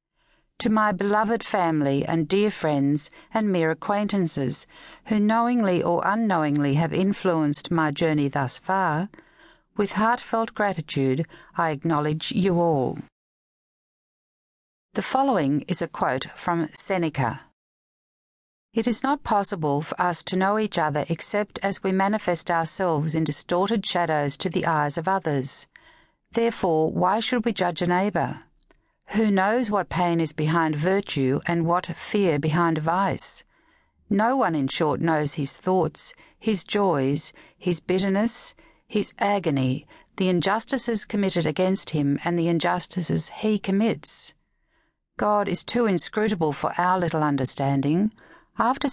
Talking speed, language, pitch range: 130 wpm, English, 160-210 Hz